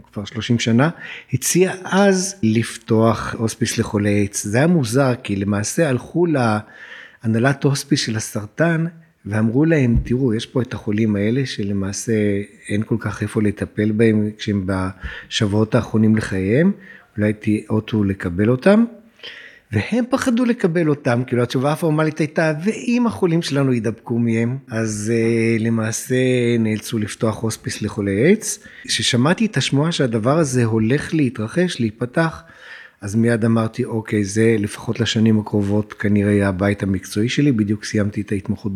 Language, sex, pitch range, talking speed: Hebrew, male, 105-140 Hz, 135 wpm